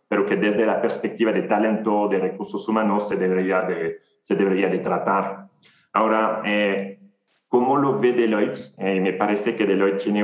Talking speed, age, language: 170 wpm, 30-49, Spanish